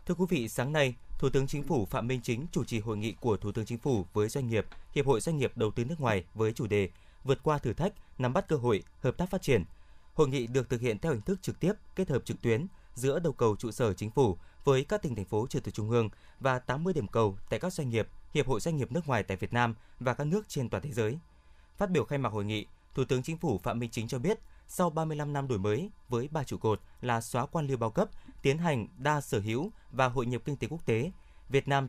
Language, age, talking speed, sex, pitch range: Vietnamese, 20-39, 275 wpm, male, 115-145 Hz